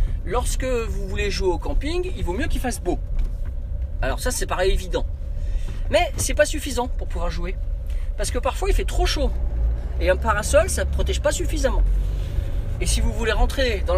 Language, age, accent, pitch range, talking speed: French, 40-59, French, 70-80 Hz, 200 wpm